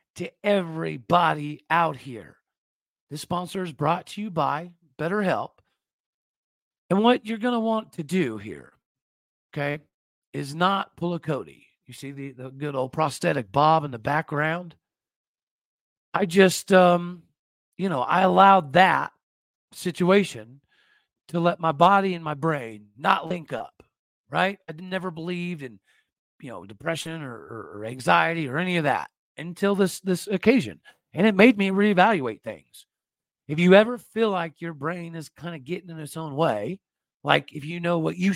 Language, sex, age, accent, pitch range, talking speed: English, male, 40-59, American, 150-190 Hz, 160 wpm